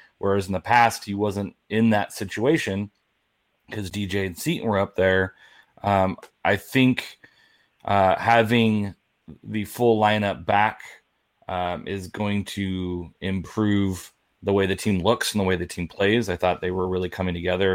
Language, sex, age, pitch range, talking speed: English, male, 30-49, 90-100 Hz, 160 wpm